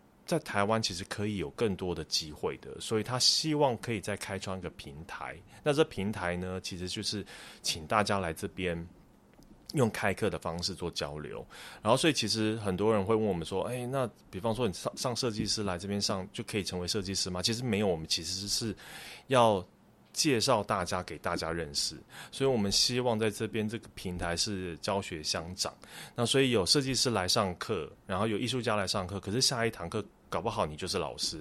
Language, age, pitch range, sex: Chinese, 30-49, 90-110 Hz, male